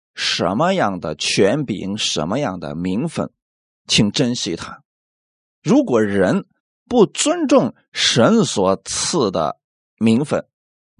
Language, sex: Chinese, male